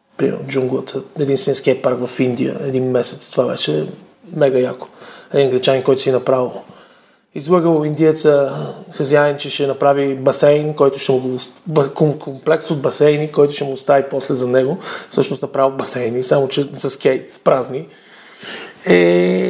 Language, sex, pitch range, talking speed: Bulgarian, male, 130-160 Hz, 140 wpm